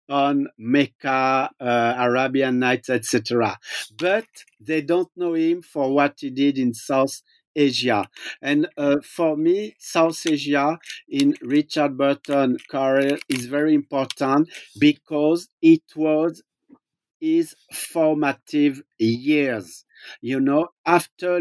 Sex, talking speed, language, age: male, 110 wpm, English, 50-69